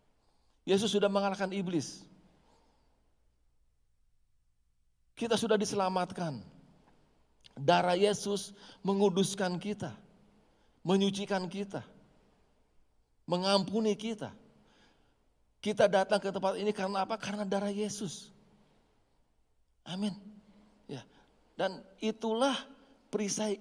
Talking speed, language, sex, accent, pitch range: 75 wpm, Indonesian, male, native, 140-205 Hz